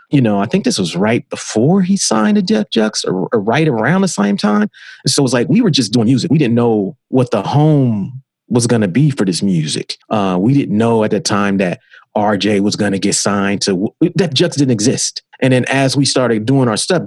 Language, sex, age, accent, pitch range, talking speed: English, male, 30-49, American, 115-150 Hz, 245 wpm